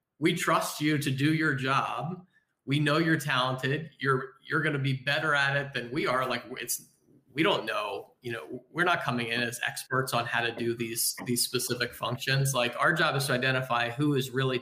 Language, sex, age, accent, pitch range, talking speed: English, male, 30-49, American, 125-150 Hz, 215 wpm